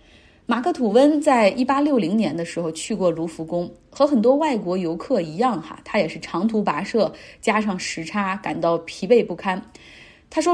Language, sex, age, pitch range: Chinese, female, 30-49, 195-275 Hz